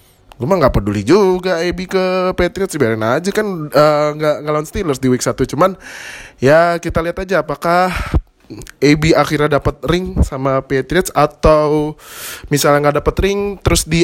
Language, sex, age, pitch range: Indonesian, male, 20-39, 115-155 Hz